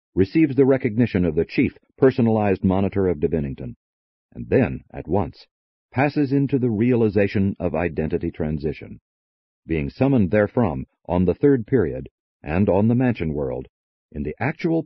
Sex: male